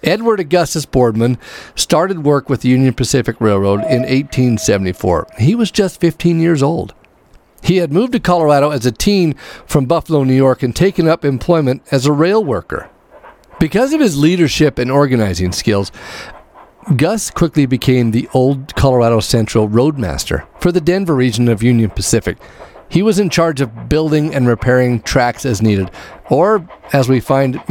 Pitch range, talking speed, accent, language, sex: 120-165 Hz, 160 wpm, American, English, male